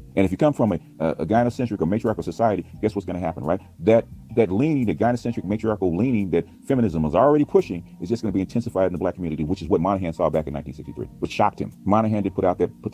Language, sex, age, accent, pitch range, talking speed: English, male, 40-59, American, 90-110 Hz, 255 wpm